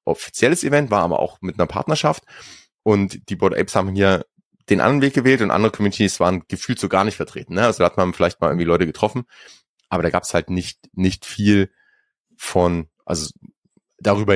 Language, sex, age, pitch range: German, male, 30-49, 90-115 Hz